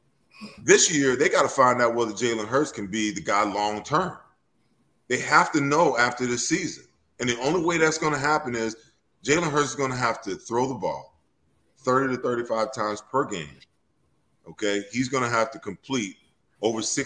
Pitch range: 105-130 Hz